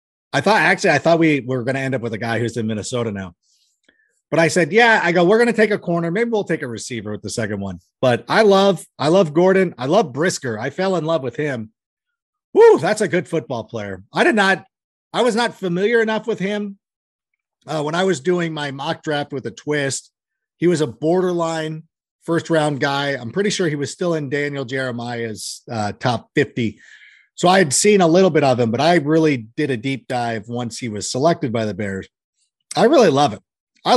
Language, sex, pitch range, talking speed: English, male, 125-180 Hz, 225 wpm